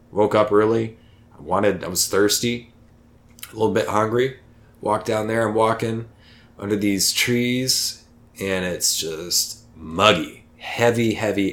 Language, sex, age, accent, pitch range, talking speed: English, male, 20-39, American, 105-120 Hz, 135 wpm